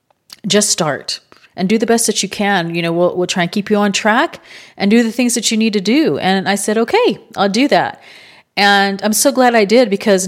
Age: 40-59